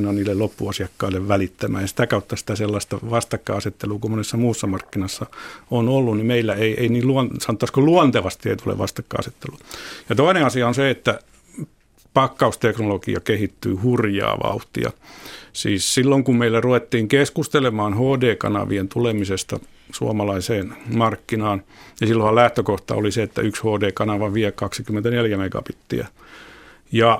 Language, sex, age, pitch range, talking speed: Finnish, male, 50-69, 100-120 Hz, 125 wpm